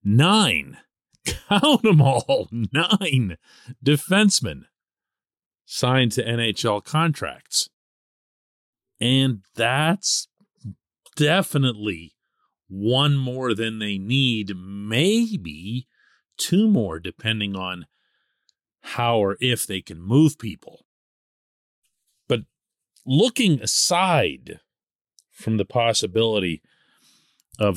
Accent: American